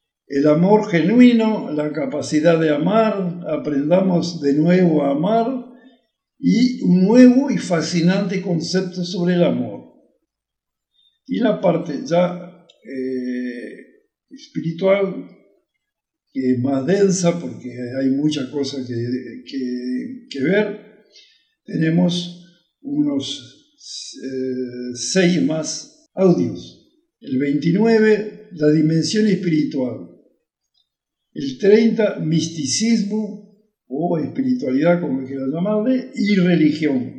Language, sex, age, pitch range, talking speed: Spanish, male, 60-79, 150-225 Hz, 95 wpm